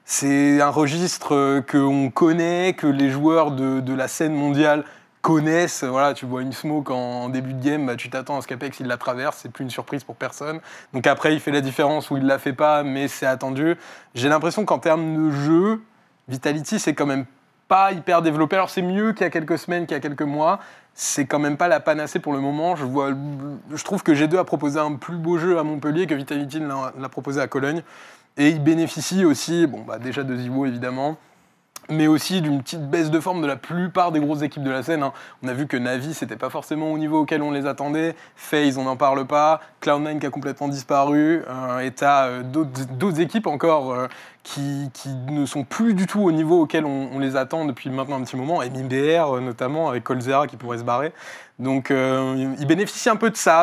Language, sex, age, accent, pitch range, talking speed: French, male, 20-39, French, 135-160 Hz, 225 wpm